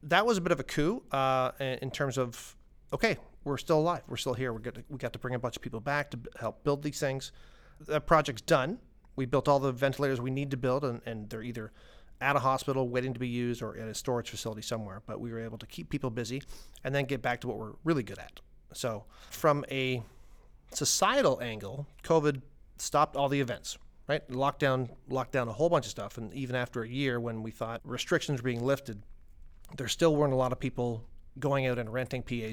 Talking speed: 225 wpm